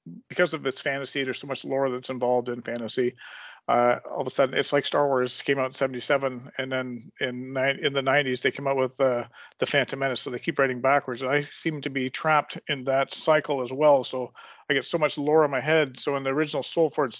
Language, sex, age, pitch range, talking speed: English, male, 40-59, 130-155 Hz, 245 wpm